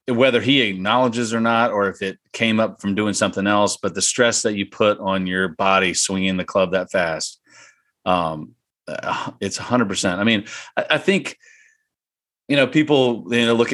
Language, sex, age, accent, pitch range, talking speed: English, male, 40-59, American, 100-120 Hz, 190 wpm